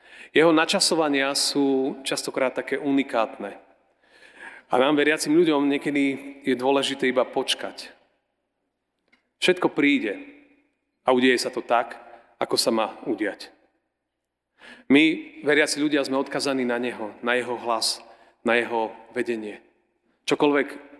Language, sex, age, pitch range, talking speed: Slovak, male, 40-59, 115-145 Hz, 115 wpm